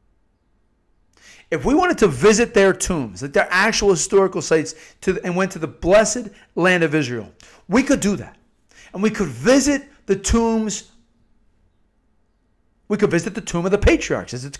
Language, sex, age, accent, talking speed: English, male, 50-69, American, 160 wpm